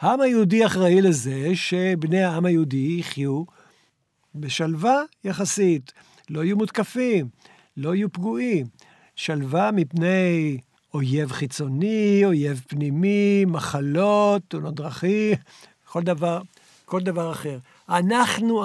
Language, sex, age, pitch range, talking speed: Hebrew, male, 60-79, 150-200 Hz, 95 wpm